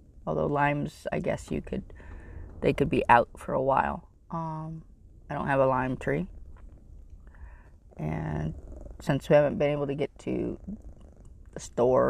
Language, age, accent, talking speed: English, 30-49, American, 155 wpm